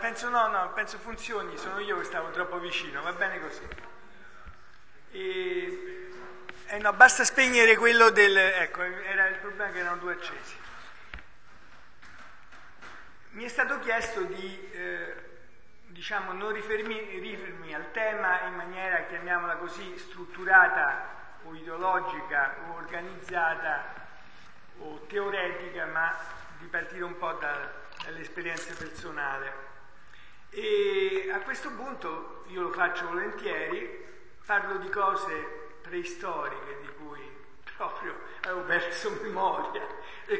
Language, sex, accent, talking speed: Italian, male, native, 115 wpm